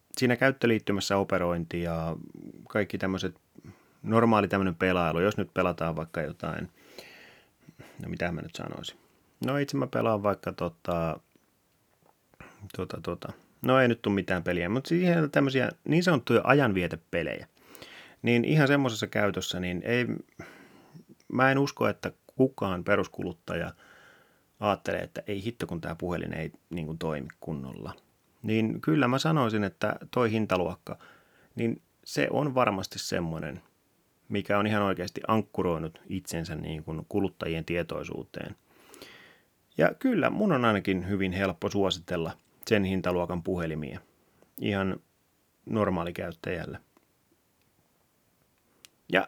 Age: 30-49